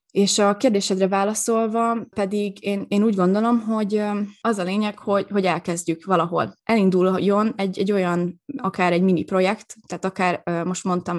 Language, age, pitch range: Hungarian, 20-39, 175-200 Hz